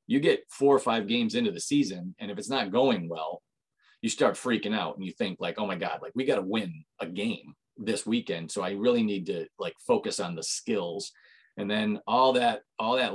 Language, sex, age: English, male, 30-49